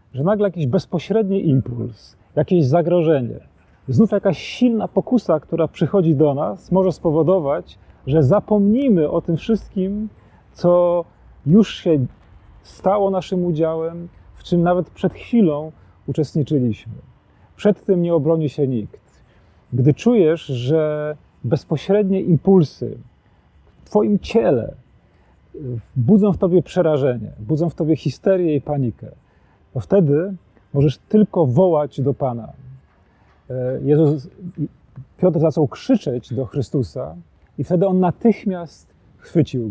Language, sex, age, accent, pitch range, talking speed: Polish, male, 40-59, native, 125-180 Hz, 115 wpm